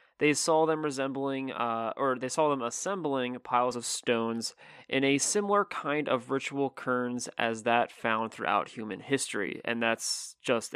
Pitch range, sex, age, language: 120-145 Hz, male, 20-39, English